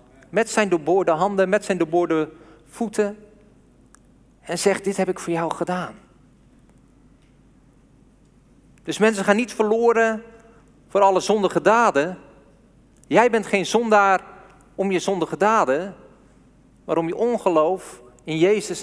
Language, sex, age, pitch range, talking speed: Dutch, male, 40-59, 175-235 Hz, 125 wpm